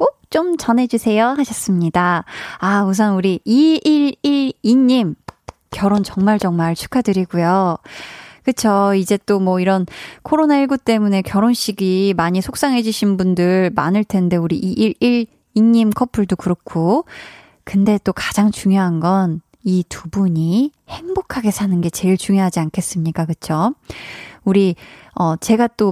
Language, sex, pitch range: Korean, female, 180-240 Hz